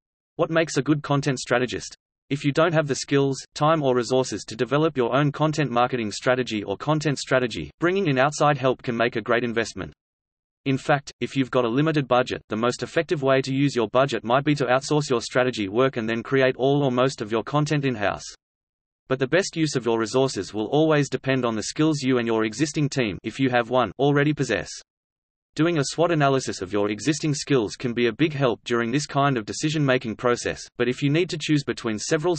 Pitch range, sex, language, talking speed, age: 115-145 Hz, male, English, 220 wpm, 30-49